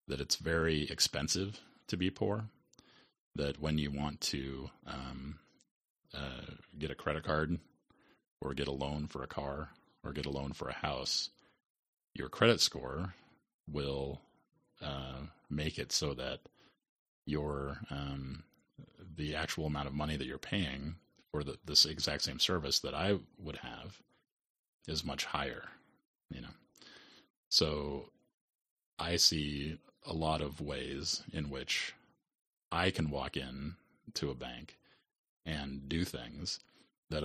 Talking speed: 140 wpm